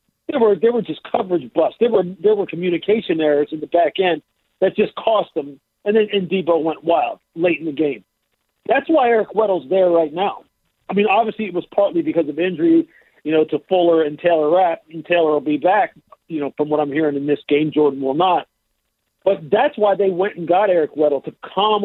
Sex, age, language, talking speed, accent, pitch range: male, 50-69, English, 225 wpm, American, 155-205 Hz